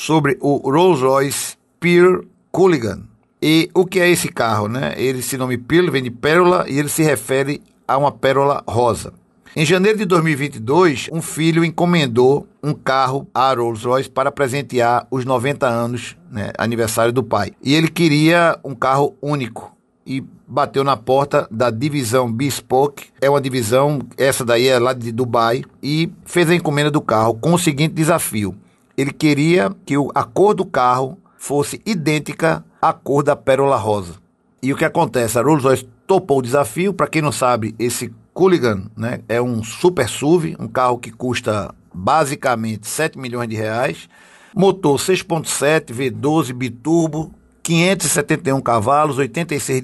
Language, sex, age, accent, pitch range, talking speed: Portuguese, male, 60-79, Brazilian, 125-160 Hz, 155 wpm